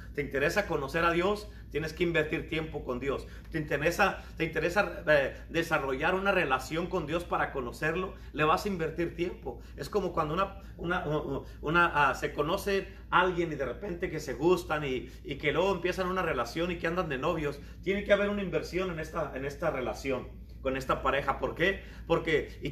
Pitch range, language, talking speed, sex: 145-175 Hz, Spanish, 195 wpm, male